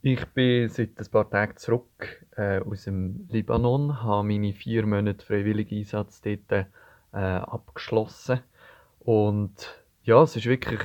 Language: German